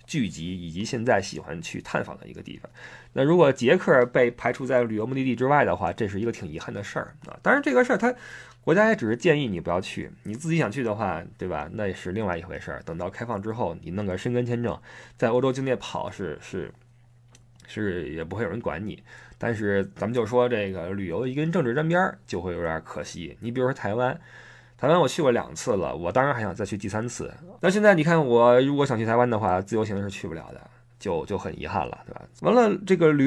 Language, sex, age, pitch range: Chinese, male, 20-39, 100-145 Hz